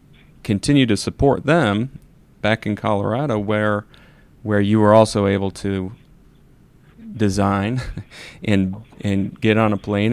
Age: 30-49